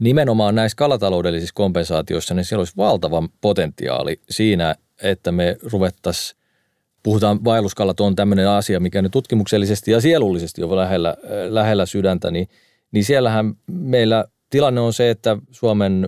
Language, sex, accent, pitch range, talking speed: Finnish, male, native, 95-115 Hz, 135 wpm